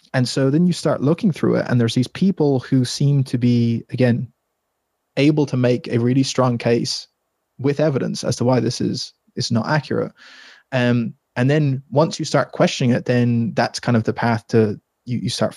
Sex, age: male, 20-39